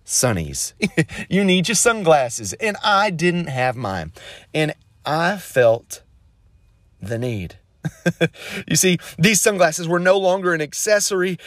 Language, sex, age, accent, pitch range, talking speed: English, male, 30-49, American, 115-170 Hz, 120 wpm